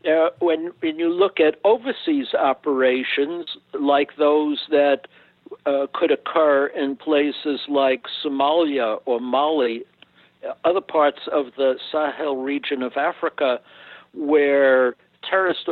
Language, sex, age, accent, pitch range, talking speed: English, male, 60-79, American, 135-155 Hz, 115 wpm